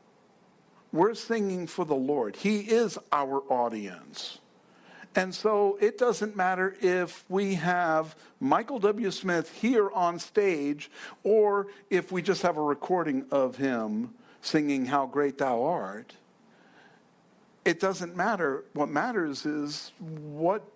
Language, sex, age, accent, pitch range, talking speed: English, male, 60-79, American, 140-200 Hz, 125 wpm